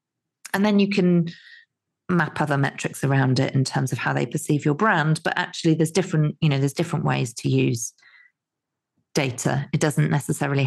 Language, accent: English, British